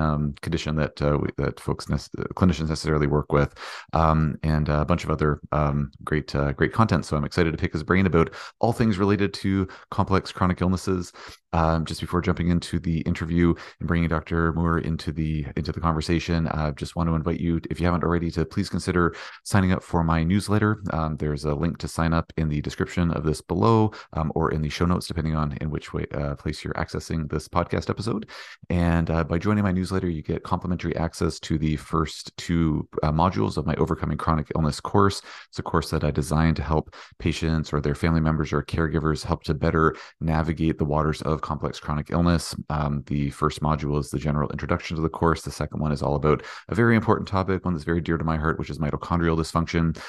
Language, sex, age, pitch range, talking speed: English, male, 30-49, 75-85 Hz, 220 wpm